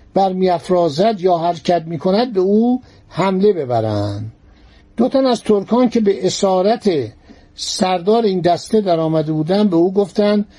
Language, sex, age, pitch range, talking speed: Persian, male, 60-79, 165-215 Hz, 140 wpm